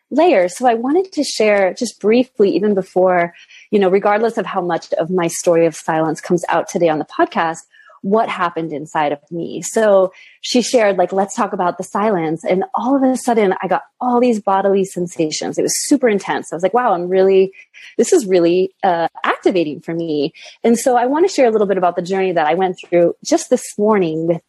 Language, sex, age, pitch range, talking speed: English, female, 30-49, 175-230 Hz, 220 wpm